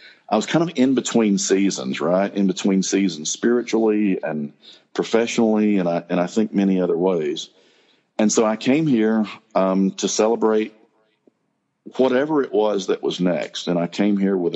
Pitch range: 90-110 Hz